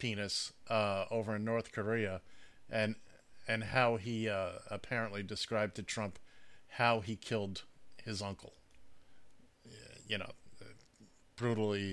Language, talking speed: English, 115 wpm